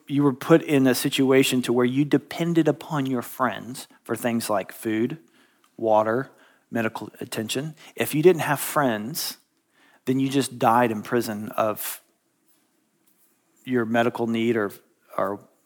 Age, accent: 40-59, American